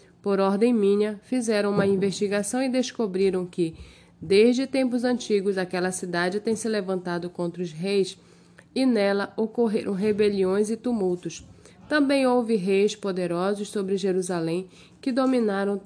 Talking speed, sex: 130 wpm, female